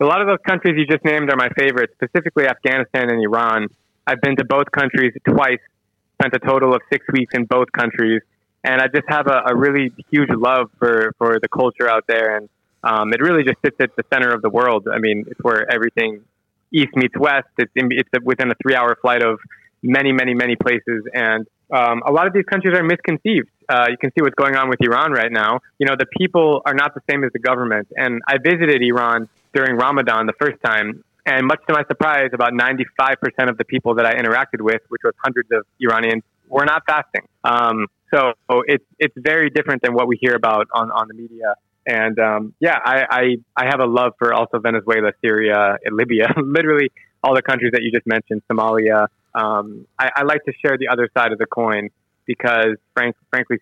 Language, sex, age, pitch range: English, male, 20-39, 110-135 Hz